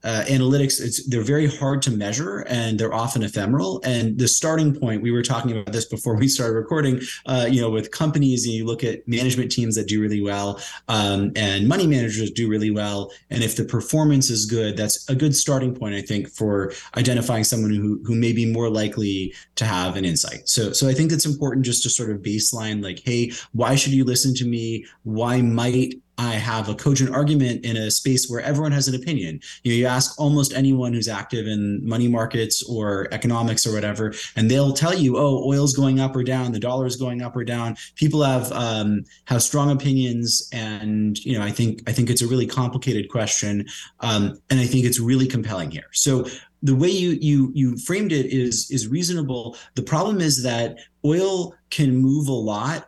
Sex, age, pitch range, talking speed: male, 20-39, 110-135 Hz, 210 wpm